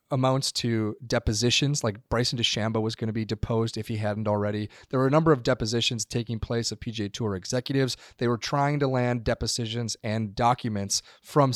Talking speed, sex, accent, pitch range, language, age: 185 wpm, male, American, 110-135 Hz, English, 30-49